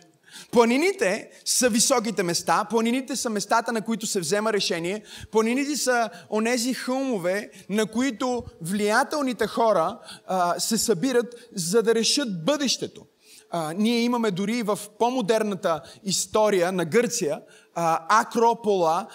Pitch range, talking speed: 180-230 Hz, 120 wpm